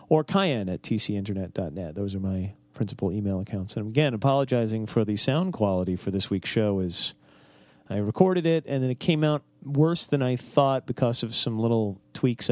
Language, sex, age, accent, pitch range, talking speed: English, male, 40-59, American, 95-125 Hz, 185 wpm